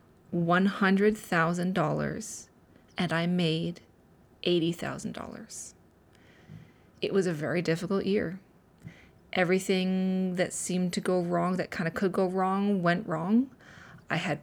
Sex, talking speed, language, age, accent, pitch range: female, 110 wpm, English, 30-49, American, 170-205 Hz